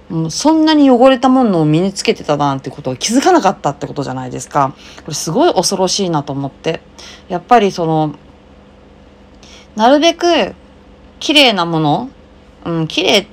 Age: 30-49